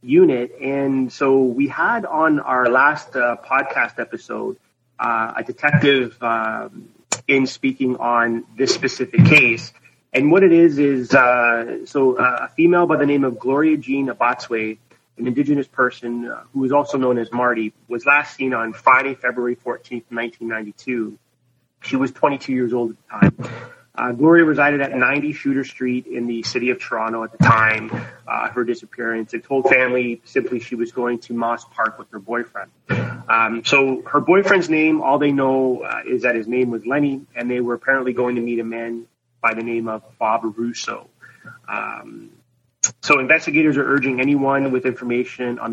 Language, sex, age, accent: English, male, 30-49, American